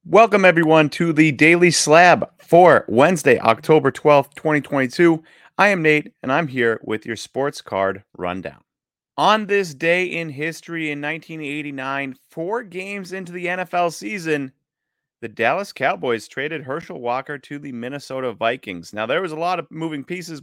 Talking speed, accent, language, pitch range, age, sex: 155 wpm, American, English, 135-170 Hz, 30-49, male